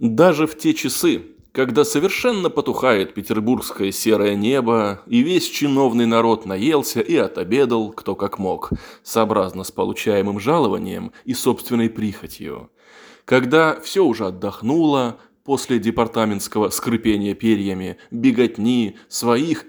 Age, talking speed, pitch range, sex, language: 20-39, 115 wpm, 110-145 Hz, male, Russian